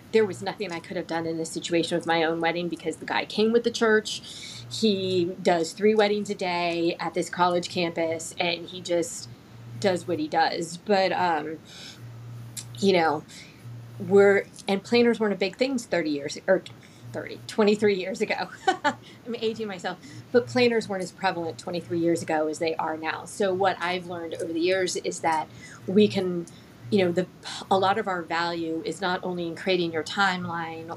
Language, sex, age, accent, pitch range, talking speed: English, female, 30-49, American, 160-195 Hz, 190 wpm